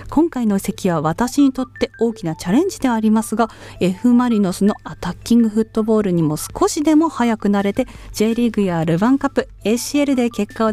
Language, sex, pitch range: Japanese, female, 175-245 Hz